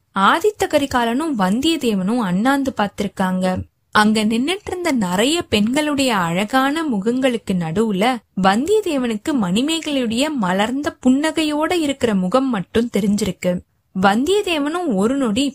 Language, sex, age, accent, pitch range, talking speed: Tamil, female, 20-39, native, 200-285 Hz, 90 wpm